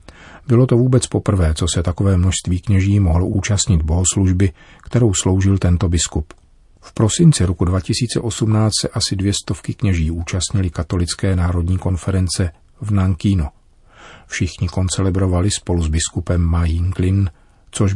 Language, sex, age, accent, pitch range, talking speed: Czech, male, 40-59, native, 85-100 Hz, 130 wpm